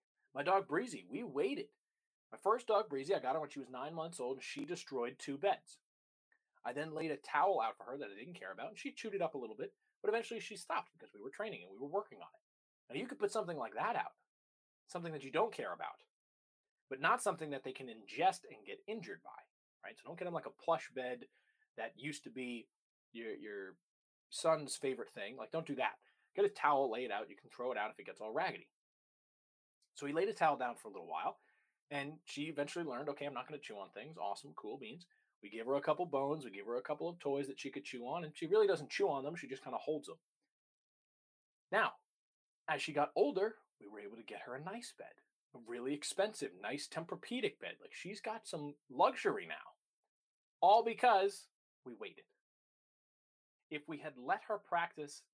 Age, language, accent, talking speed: 20-39, English, American, 230 wpm